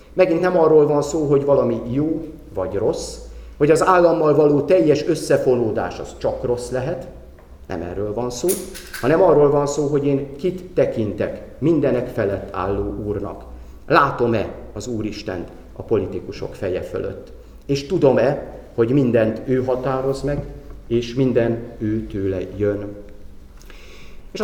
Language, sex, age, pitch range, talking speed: Hungarian, male, 40-59, 105-150 Hz, 135 wpm